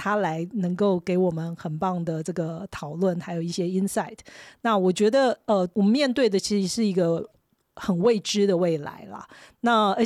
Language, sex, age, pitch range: Chinese, female, 40-59, 175-220 Hz